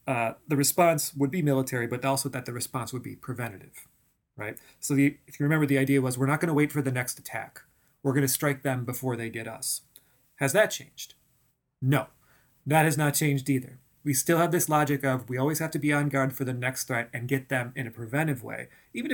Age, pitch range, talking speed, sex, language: 30-49, 130-150 Hz, 230 wpm, male, English